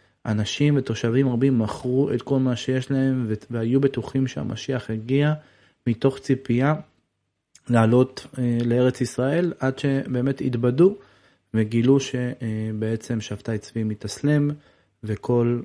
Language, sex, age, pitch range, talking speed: Hebrew, male, 30-49, 110-140 Hz, 105 wpm